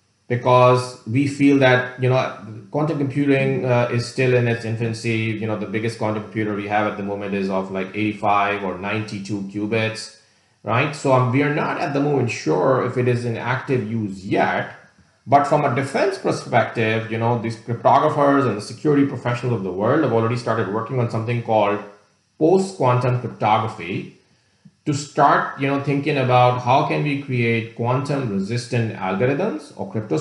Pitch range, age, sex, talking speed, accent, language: 110-130 Hz, 30-49, male, 175 wpm, Indian, English